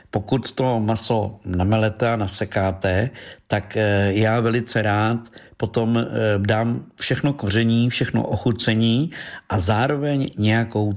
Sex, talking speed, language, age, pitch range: male, 105 wpm, Czech, 50-69, 100-120 Hz